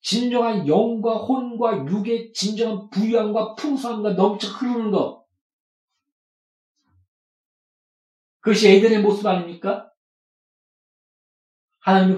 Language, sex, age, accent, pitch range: Korean, male, 40-59, native, 180-225 Hz